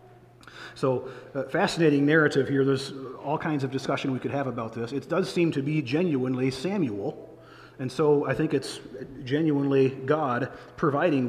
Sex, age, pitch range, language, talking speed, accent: male, 40-59, 125-155 Hz, English, 160 wpm, American